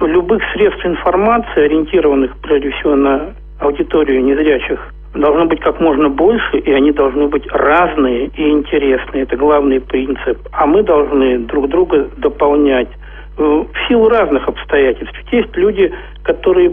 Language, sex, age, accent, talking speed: Russian, male, 50-69, native, 140 wpm